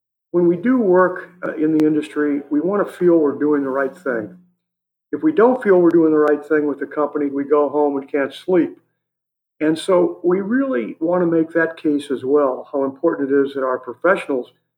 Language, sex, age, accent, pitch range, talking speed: English, male, 50-69, American, 140-175 Hz, 210 wpm